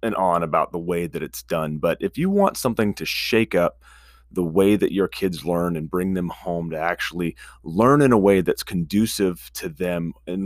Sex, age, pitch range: male, 30-49, 85-115 Hz